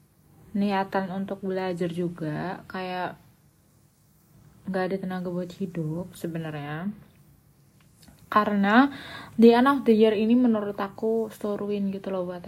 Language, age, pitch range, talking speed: Indonesian, 20-39, 160-190 Hz, 110 wpm